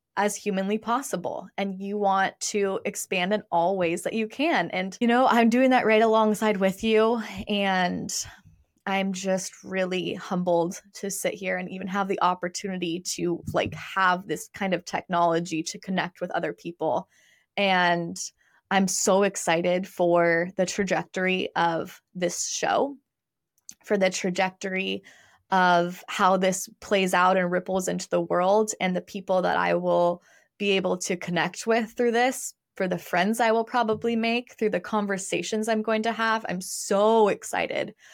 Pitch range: 180-215 Hz